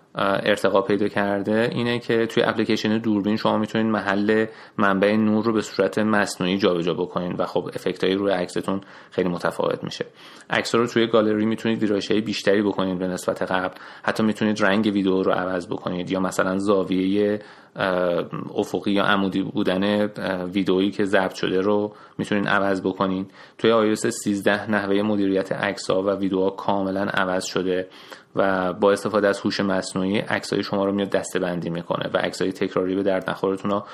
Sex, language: male, Persian